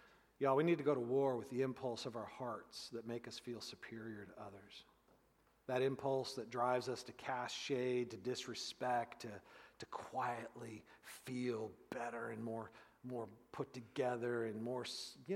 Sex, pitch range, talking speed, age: male, 125-195 Hz, 170 wpm, 40-59